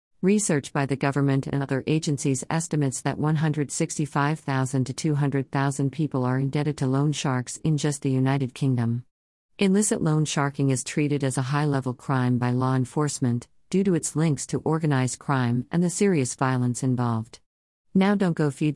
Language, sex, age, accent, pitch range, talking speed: English, female, 50-69, American, 130-170 Hz, 165 wpm